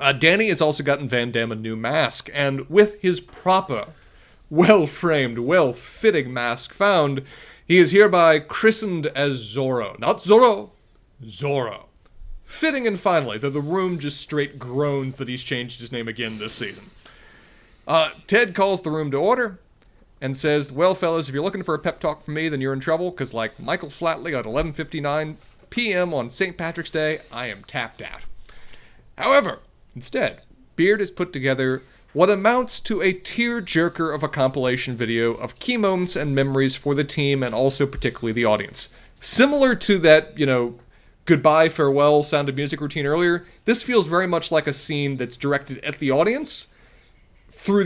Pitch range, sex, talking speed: 130-170 Hz, male, 170 wpm